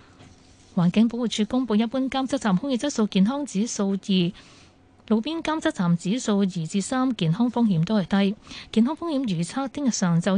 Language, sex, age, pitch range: Chinese, female, 20-39, 175-235 Hz